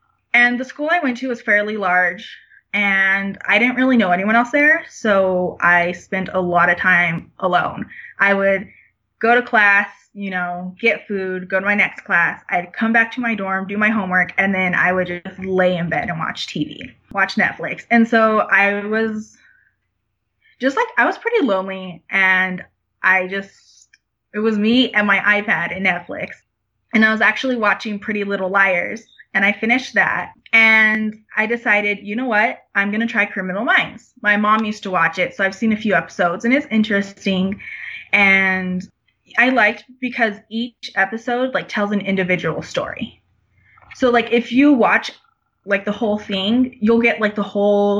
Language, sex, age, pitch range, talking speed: English, female, 20-39, 190-235 Hz, 185 wpm